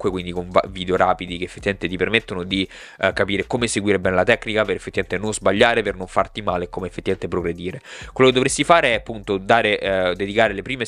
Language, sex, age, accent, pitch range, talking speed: Italian, male, 20-39, native, 95-115 Hz, 215 wpm